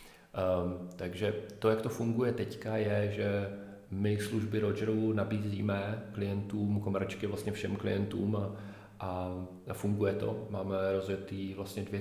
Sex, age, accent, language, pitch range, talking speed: male, 40-59, native, Czech, 95-105 Hz, 130 wpm